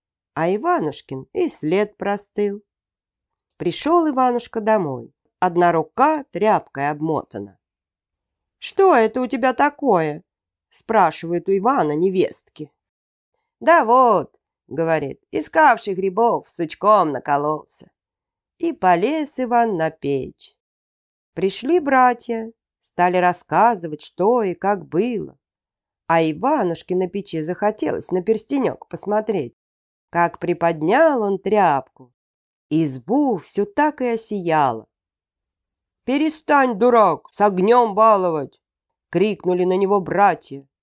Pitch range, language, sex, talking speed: 160-240 Hz, Russian, female, 100 wpm